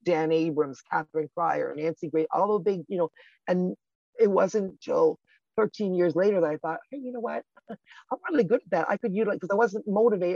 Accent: American